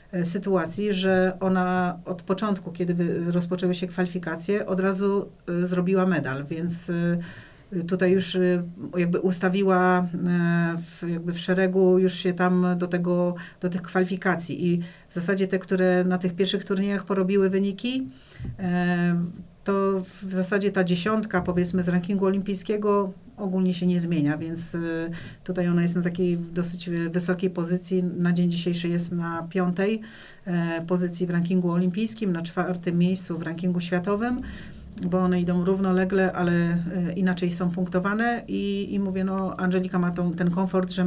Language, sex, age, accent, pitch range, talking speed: Polish, female, 40-59, native, 175-190 Hz, 140 wpm